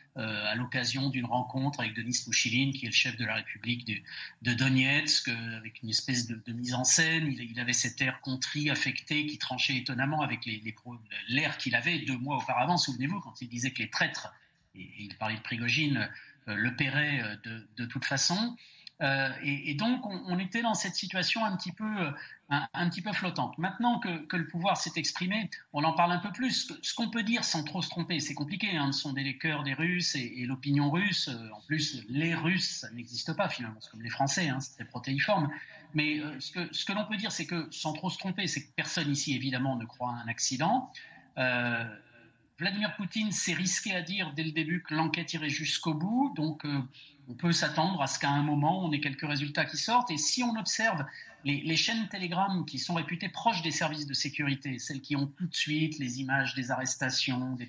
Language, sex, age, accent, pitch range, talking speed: French, male, 40-59, French, 130-175 Hz, 220 wpm